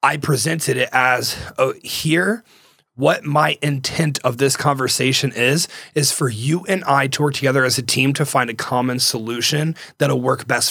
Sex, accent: male, American